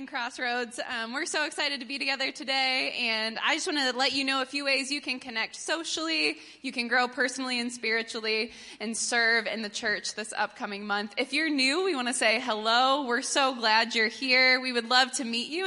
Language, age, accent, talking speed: English, 20-39, American, 220 wpm